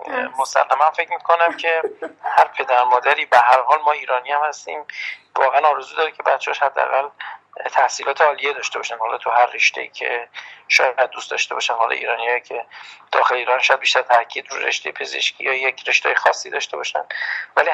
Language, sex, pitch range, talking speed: Persian, male, 140-165 Hz, 175 wpm